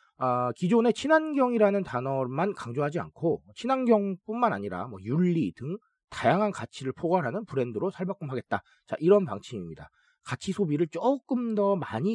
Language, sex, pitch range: Korean, male, 140-210 Hz